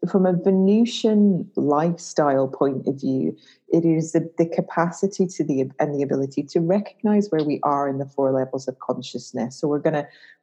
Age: 30-49